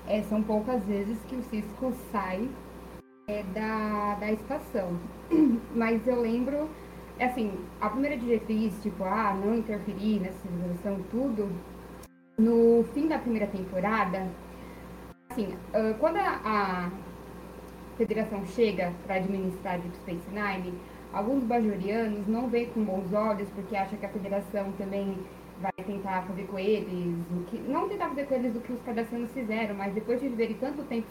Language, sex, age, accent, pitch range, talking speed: Portuguese, female, 20-39, Brazilian, 195-250 Hz, 150 wpm